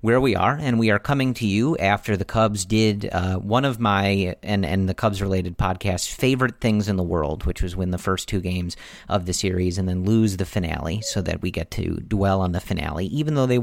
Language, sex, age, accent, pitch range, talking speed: English, male, 40-59, American, 90-115 Hz, 240 wpm